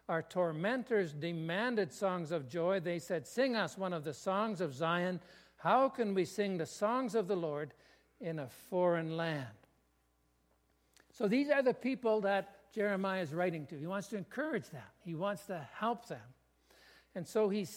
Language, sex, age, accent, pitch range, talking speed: English, male, 60-79, American, 155-220 Hz, 175 wpm